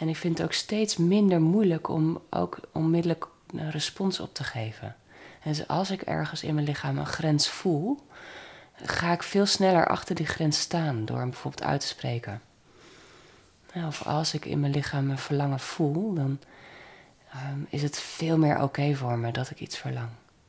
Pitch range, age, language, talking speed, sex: 125-150 Hz, 30-49, Dutch, 180 wpm, female